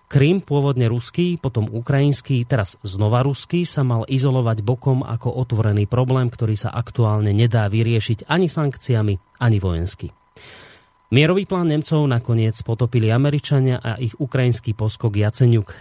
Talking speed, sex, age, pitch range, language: 135 wpm, male, 30-49, 110-135 Hz, Slovak